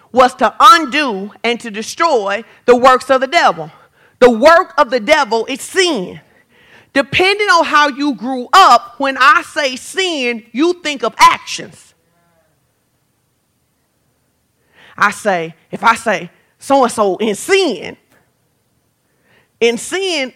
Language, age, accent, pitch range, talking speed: English, 40-59, American, 205-275 Hz, 125 wpm